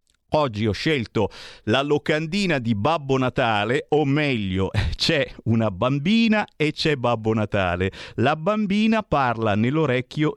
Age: 50-69